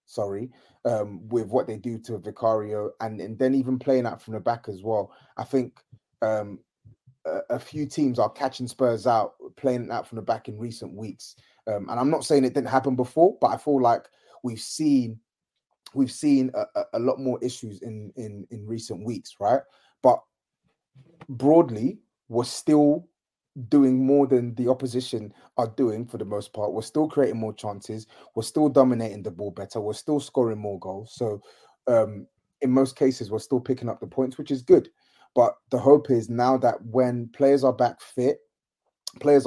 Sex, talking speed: male, 190 wpm